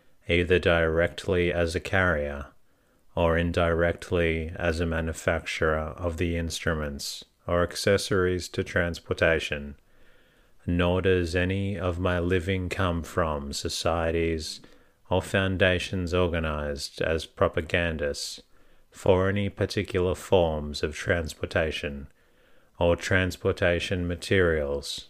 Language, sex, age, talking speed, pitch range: English, male, 40-59, 95 wpm, 80-90 Hz